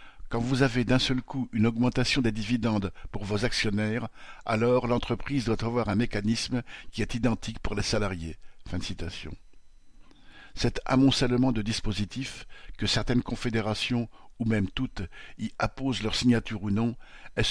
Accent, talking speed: French, 145 wpm